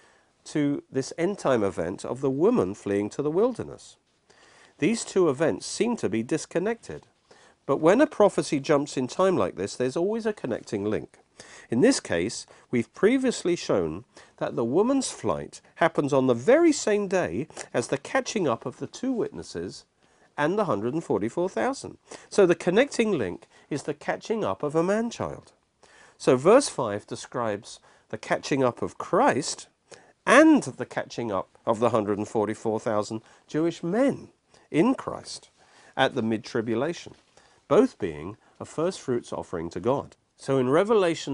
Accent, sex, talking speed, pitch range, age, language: British, male, 150 wpm, 110-180 Hz, 50-69, English